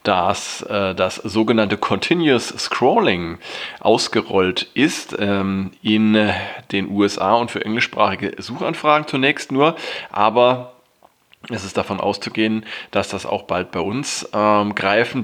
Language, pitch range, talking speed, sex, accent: German, 100-115 Hz, 115 wpm, male, German